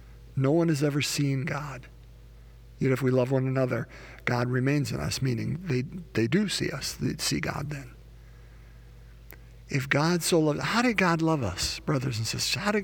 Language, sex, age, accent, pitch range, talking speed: English, male, 50-69, American, 130-175 Hz, 190 wpm